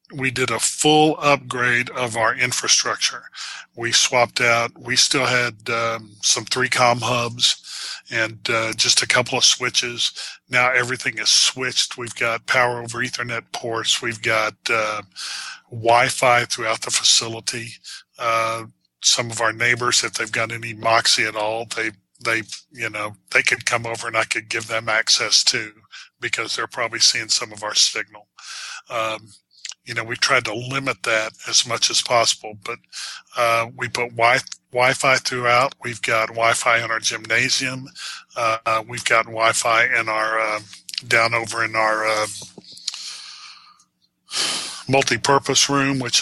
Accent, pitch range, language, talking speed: American, 115-125 Hz, English, 155 wpm